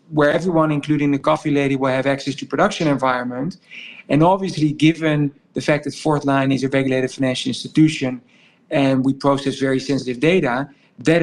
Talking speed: 170 wpm